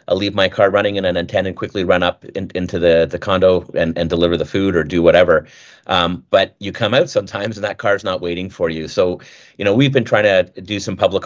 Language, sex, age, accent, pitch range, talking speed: English, male, 30-49, American, 85-110 Hz, 250 wpm